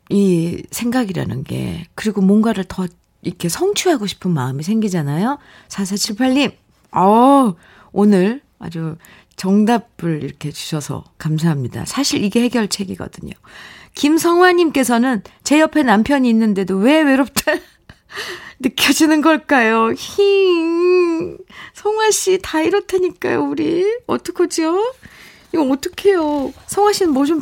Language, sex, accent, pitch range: Korean, female, native, 185-300 Hz